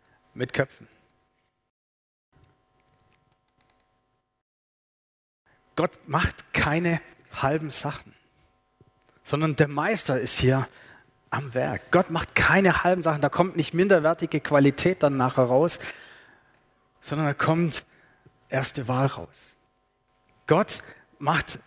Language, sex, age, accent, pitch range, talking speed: German, male, 30-49, German, 135-175 Hz, 95 wpm